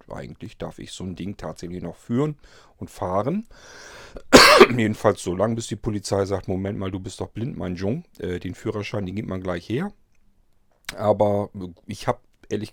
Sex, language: male, German